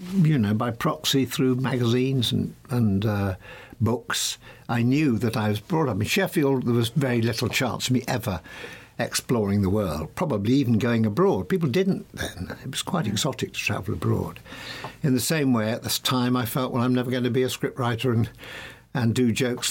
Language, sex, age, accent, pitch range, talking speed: English, male, 60-79, British, 105-140 Hz, 195 wpm